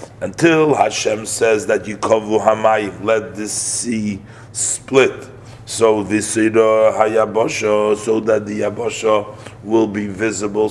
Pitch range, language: 105-115 Hz, English